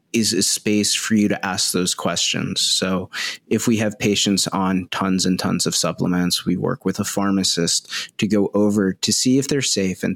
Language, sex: English, male